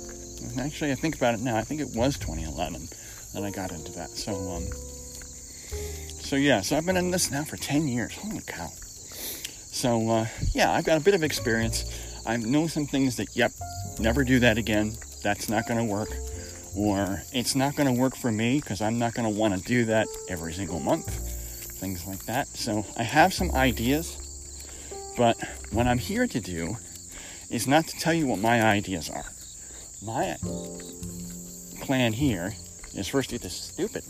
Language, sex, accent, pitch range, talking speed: English, male, American, 90-130 Hz, 185 wpm